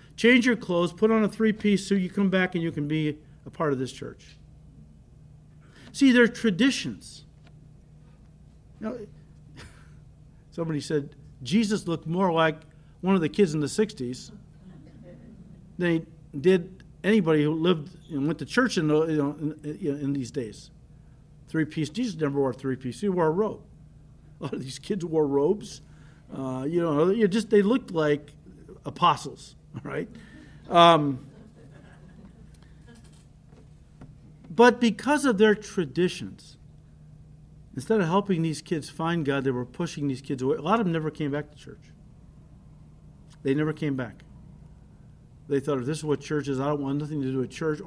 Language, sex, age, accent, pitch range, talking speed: English, male, 50-69, American, 145-180 Hz, 155 wpm